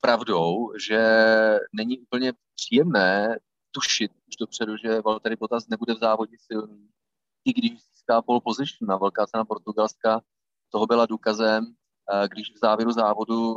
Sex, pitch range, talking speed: male, 110-125 Hz, 135 wpm